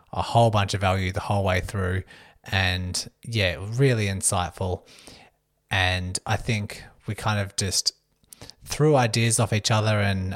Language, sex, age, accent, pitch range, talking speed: English, male, 20-39, Australian, 95-115 Hz, 150 wpm